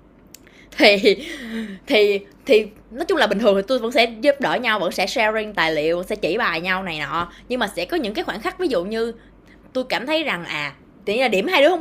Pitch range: 195-295 Hz